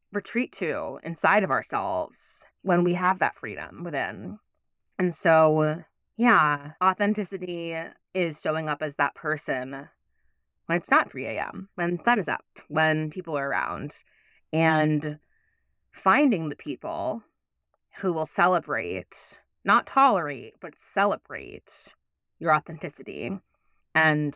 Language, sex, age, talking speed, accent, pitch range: English, female, 20-39, 120 wpm, American, 140-165 Hz